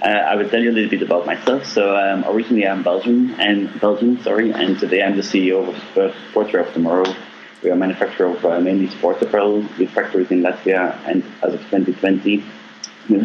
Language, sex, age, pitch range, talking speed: English, male, 30-49, 90-105 Hz, 205 wpm